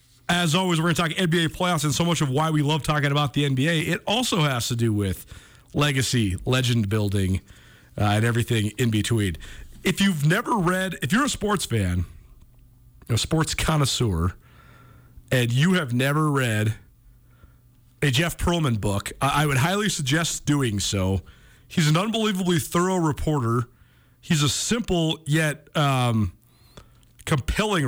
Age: 40-59